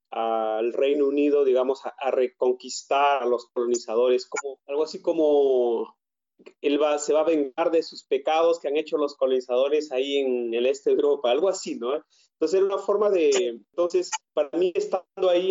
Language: Polish